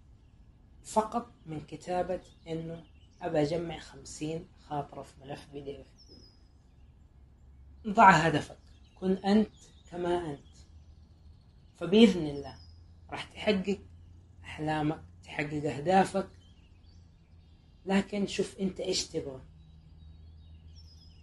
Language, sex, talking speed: Arabic, female, 80 wpm